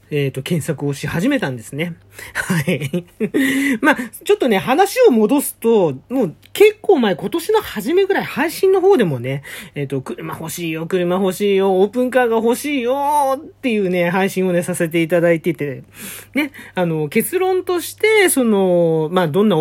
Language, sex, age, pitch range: Japanese, male, 40-59, 155-260 Hz